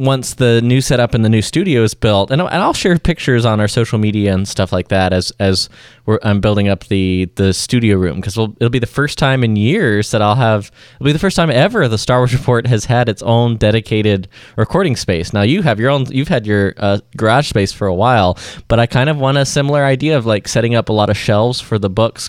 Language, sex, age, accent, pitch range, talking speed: English, male, 20-39, American, 105-130 Hz, 255 wpm